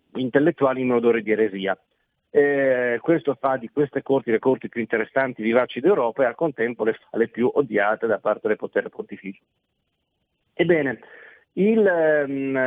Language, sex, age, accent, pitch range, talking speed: Italian, male, 40-59, native, 115-145 Hz, 155 wpm